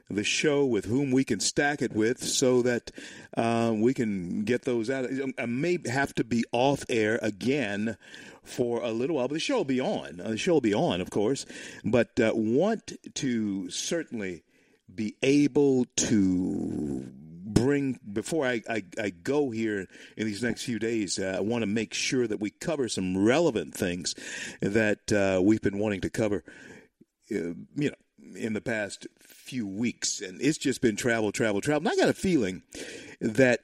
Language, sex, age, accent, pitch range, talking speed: English, male, 50-69, American, 105-125 Hz, 180 wpm